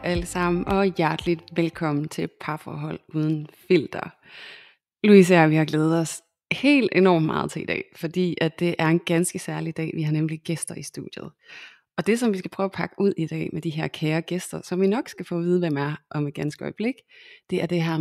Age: 30-49